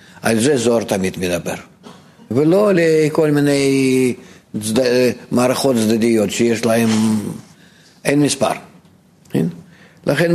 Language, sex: Hebrew, male